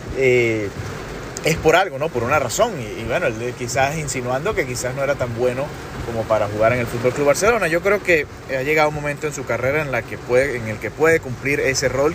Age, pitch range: 30-49, 120-150 Hz